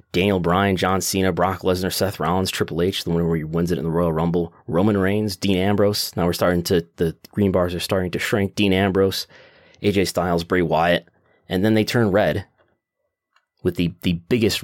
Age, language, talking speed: 30-49, English, 205 wpm